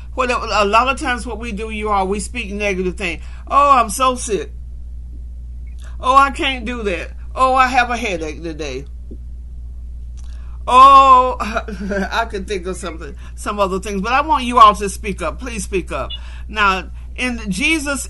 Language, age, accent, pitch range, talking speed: English, 50-69, American, 190-260 Hz, 170 wpm